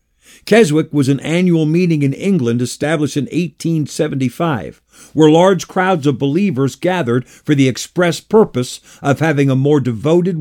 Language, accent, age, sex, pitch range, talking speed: English, American, 50-69, male, 130-165 Hz, 145 wpm